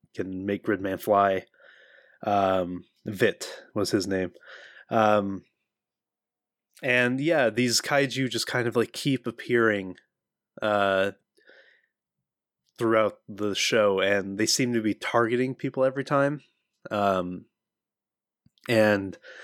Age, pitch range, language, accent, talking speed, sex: 20-39, 100-115 Hz, English, American, 110 wpm, male